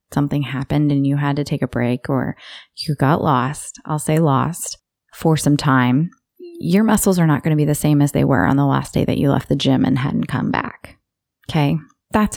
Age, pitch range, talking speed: 20-39, 140-170 Hz, 225 wpm